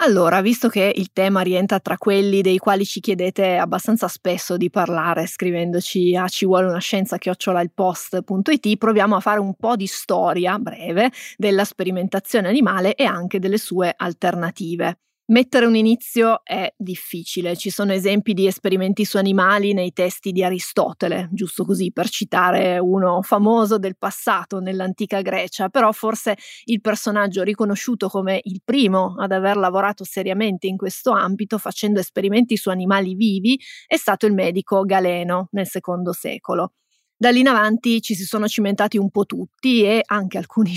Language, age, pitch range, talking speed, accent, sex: Italian, 20-39, 185-215 Hz, 160 wpm, native, female